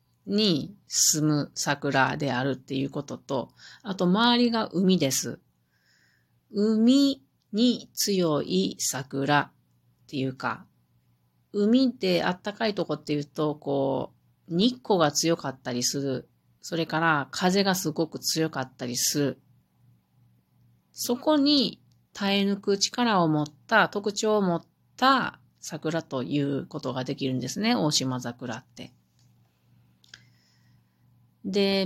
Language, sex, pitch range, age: Japanese, female, 125-200 Hz, 40-59